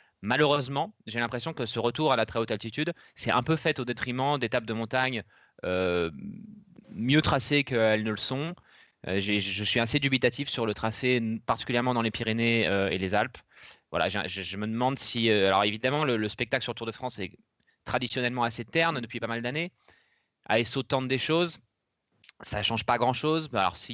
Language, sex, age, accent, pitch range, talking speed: French, male, 30-49, French, 105-130 Hz, 200 wpm